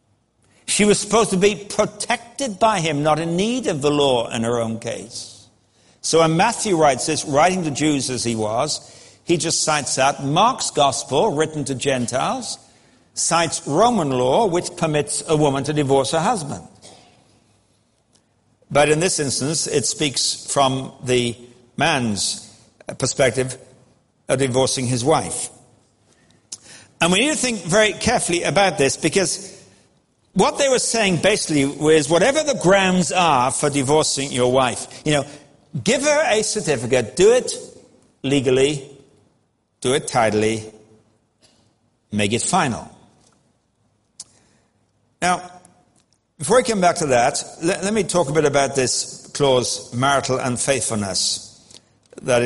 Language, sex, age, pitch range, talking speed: English, male, 60-79, 120-175 Hz, 140 wpm